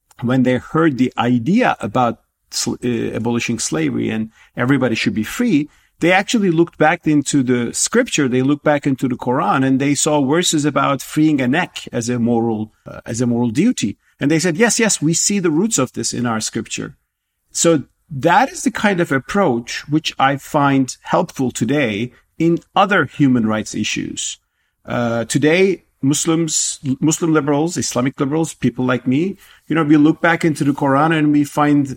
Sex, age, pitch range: male, 50-69, 125-160 Hz